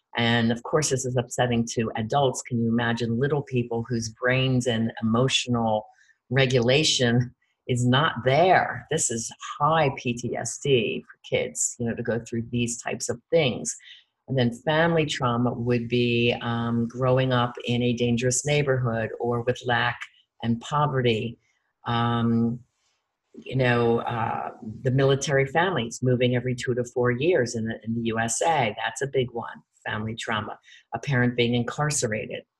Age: 50-69